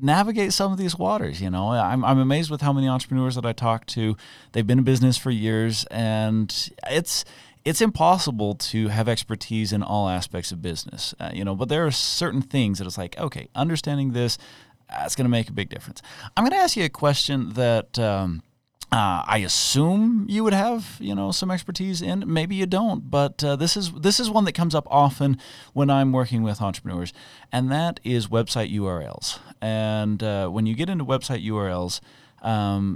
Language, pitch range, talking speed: English, 105-140 Hz, 200 wpm